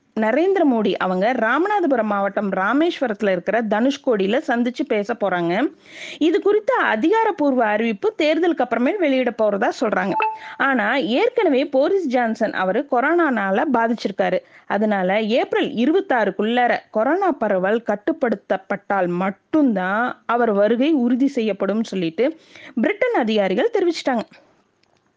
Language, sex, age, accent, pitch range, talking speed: Tamil, female, 20-39, native, 220-300 Hz, 100 wpm